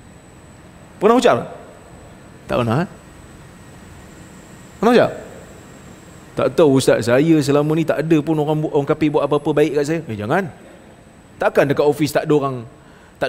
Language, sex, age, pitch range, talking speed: Malayalam, male, 20-39, 125-165 Hz, 145 wpm